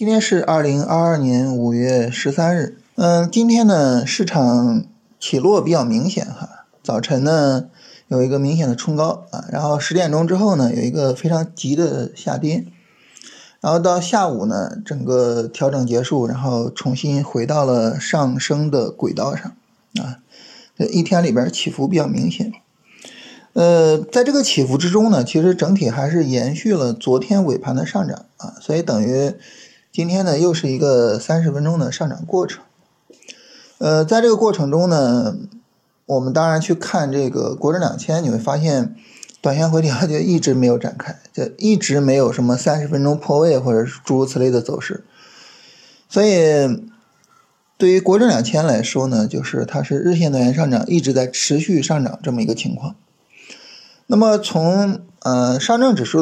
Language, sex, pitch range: Chinese, male, 130-195 Hz